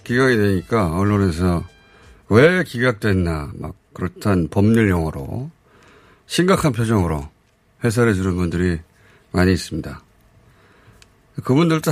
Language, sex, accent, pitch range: Korean, male, native, 95-125 Hz